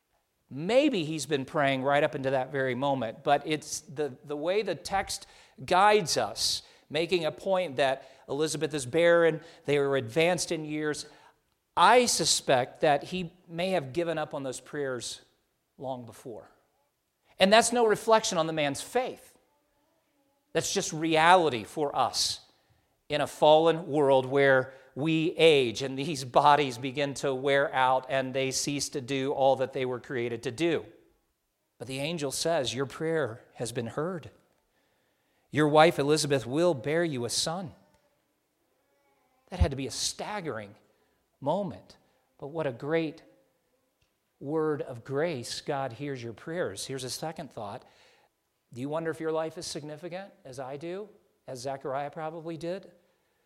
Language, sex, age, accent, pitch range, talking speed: English, male, 50-69, American, 135-170 Hz, 155 wpm